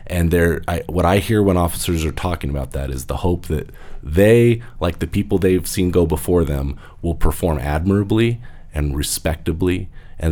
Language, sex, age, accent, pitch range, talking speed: English, male, 30-49, American, 75-100 Hz, 175 wpm